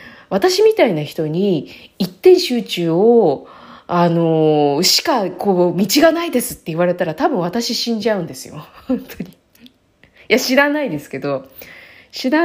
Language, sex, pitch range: Japanese, female, 165-255 Hz